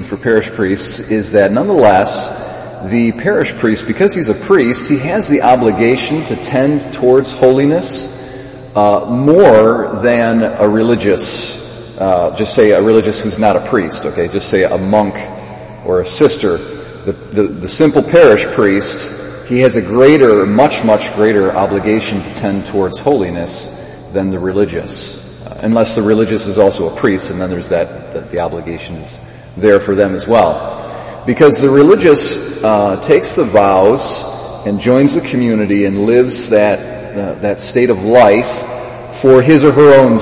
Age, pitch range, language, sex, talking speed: 40-59, 105-125 Hz, English, male, 160 wpm